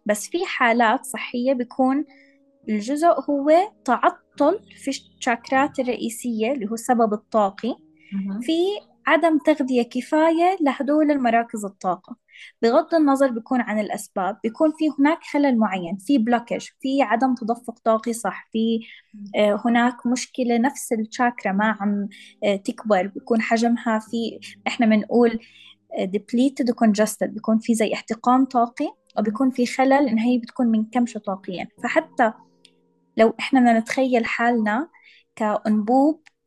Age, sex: 20-39, female